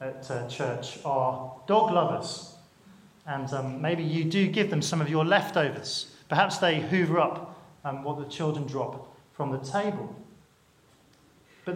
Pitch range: 150-190 Hz